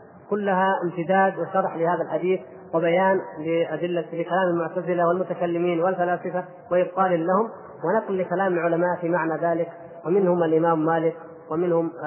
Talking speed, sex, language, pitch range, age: 115 wpm, female, Arabic, 170-195 Hz, 30-49